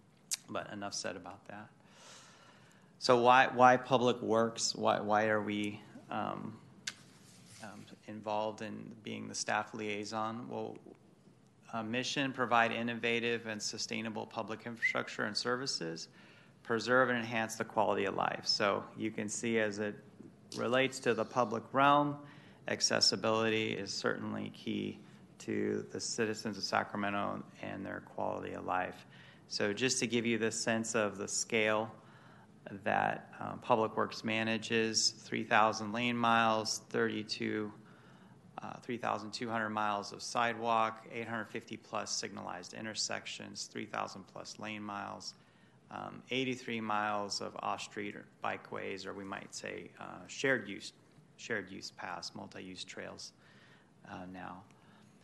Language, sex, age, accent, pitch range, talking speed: English, male, 30-49, American, 105-115 Hz, 125 wpm